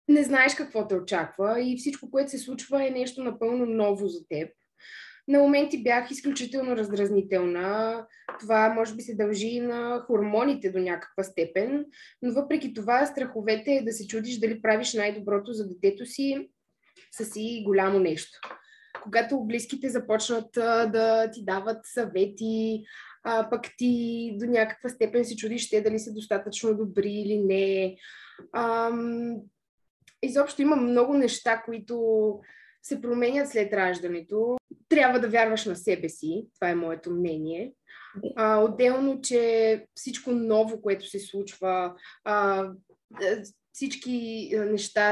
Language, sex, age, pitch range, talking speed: Bulgarian, female, 20-39, 195-240 Hz, 135 wpm